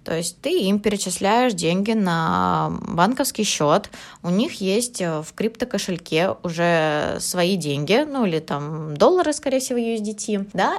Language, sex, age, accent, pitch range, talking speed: Russian, female, 20-39, native, 175-220 Hz, 140 wpm